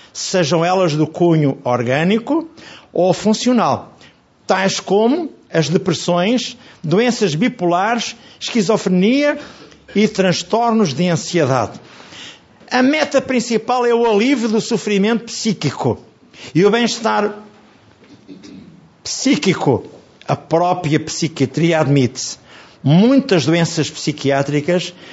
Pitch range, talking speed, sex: 145-215 Hz, 90 wpm, male